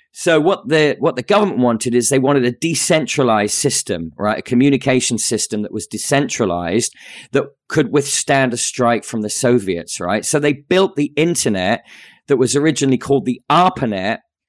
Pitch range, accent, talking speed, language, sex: 110-135 Hz, British, 165 wpm, English, male